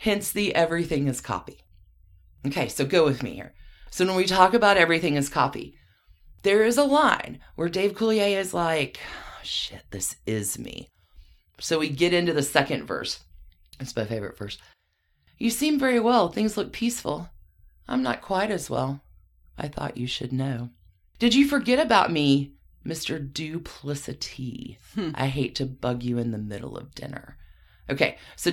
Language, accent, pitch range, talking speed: English, American, 120-205 Hz, 165 wpm